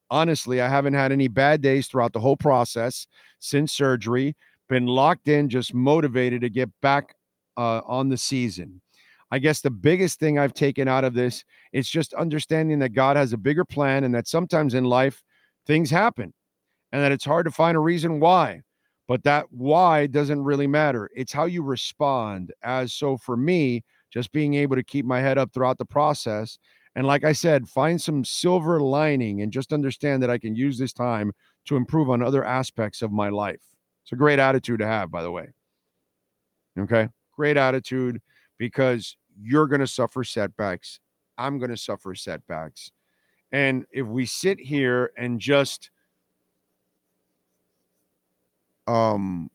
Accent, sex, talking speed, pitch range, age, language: American, male, 170 wpm, 115-145 Hz, 50-69, English